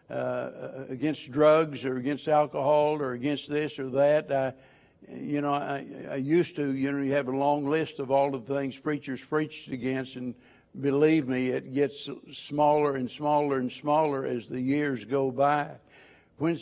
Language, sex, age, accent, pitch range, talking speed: English, male, 60-79, American, 135-150 Hz, 170 wpm